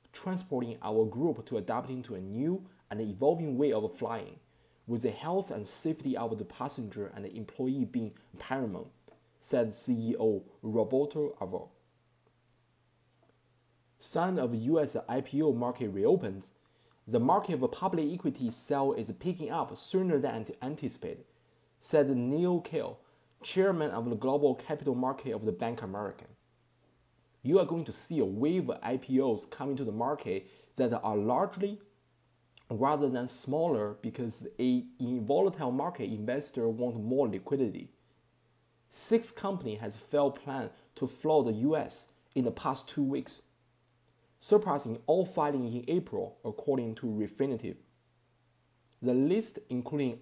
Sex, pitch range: male, 115-150 Hz